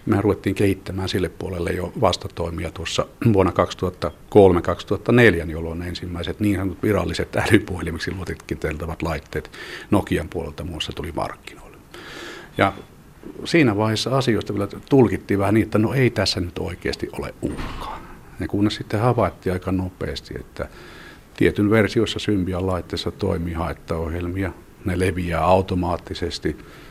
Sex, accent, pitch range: male, native, 85-105 Hz